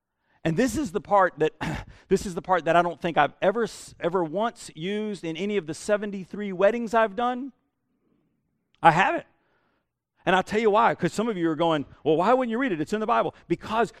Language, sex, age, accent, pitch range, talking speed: English, male, 40-59, American, 160-225 Hz, 220 wpm